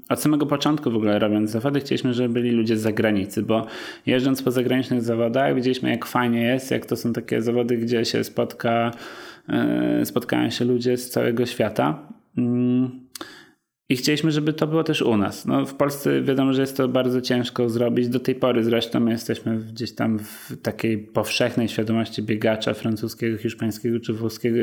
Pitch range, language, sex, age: 110-125 Hz, Polish, male, 20-39